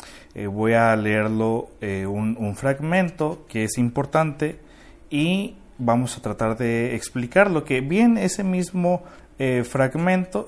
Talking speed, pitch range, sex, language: 130 wpm, 115-155 Hz, male, Spanish